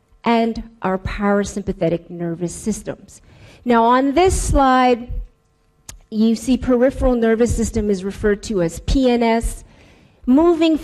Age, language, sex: 40-59, English, female